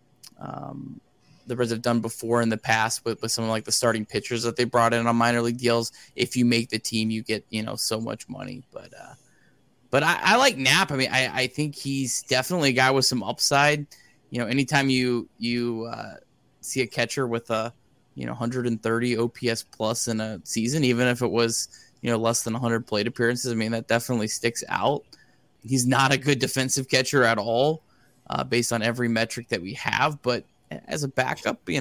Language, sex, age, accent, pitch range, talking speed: English, male, 20-39, American, 115-130 Hz, 210 wpm